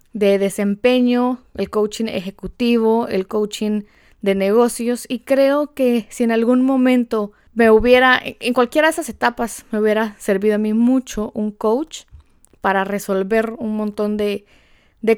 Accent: Mexican